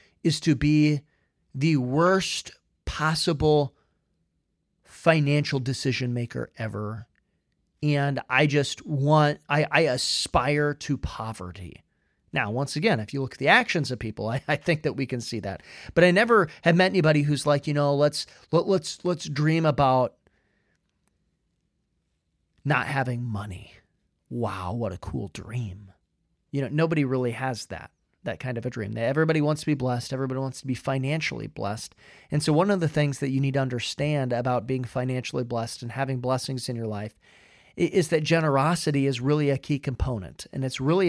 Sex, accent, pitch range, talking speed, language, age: male, American, 125-155 Hz, 170 wpm, English, 30-49